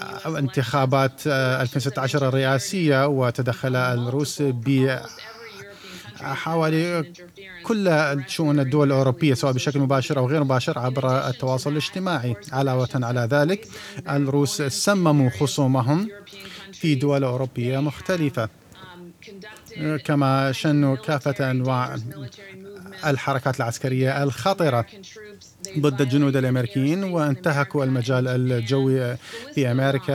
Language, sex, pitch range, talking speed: Arabic, male, 130-160 Hz, 90 wpm